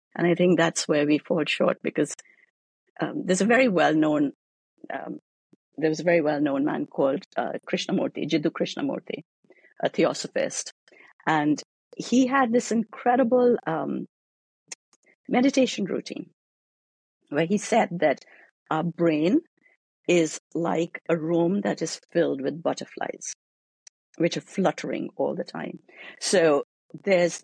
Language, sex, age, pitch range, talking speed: English, female, 50-69, 155-210 Hz, 135 wpm